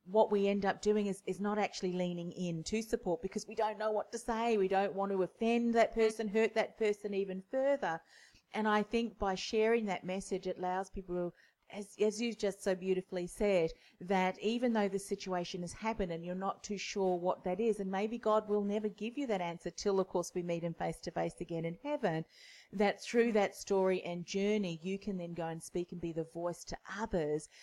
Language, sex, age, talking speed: English, female, 40-59, 225 wpm